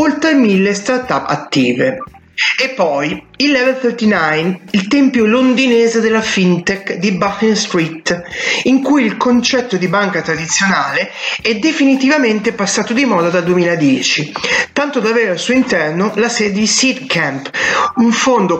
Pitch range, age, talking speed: 175-245 Hz, 30-49, 140 wpm